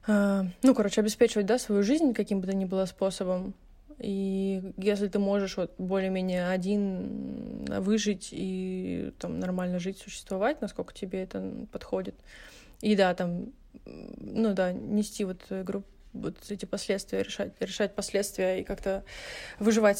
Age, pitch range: 20-39, 190-220 Hz